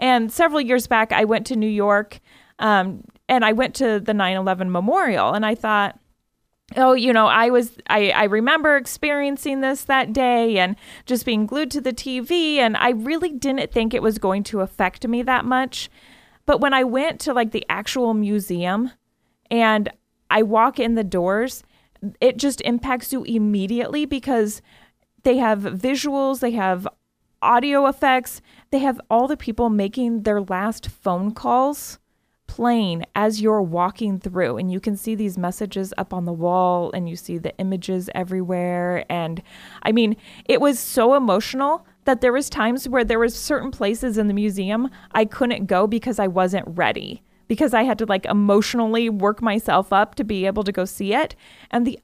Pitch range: 200-255 Hz